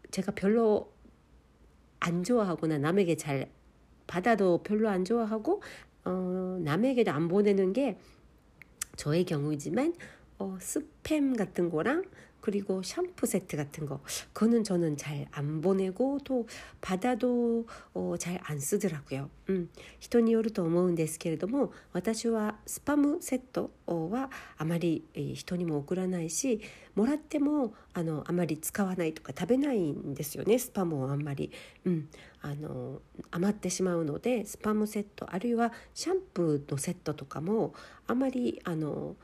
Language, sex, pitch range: Korean, female, 155-225 Hz